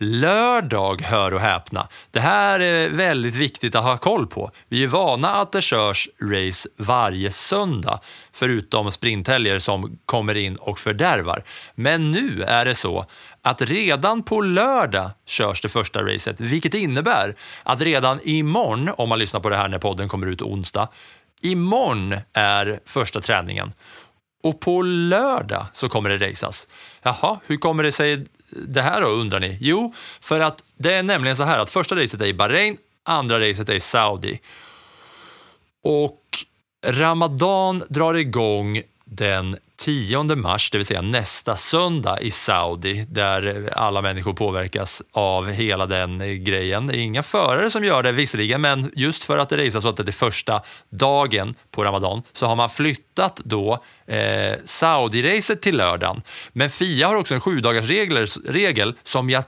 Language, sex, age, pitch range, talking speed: English, male, 30-49, 105-150 Hz, 165 wpm